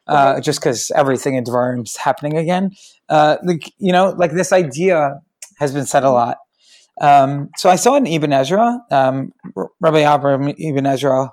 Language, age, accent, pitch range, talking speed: English, 20-39, American, 130-175 Hz, 170 wpm